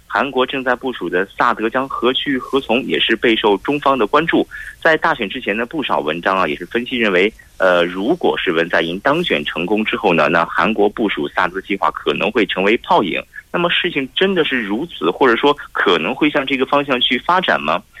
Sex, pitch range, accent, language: male, 100-140 Hz, Chinese, Korean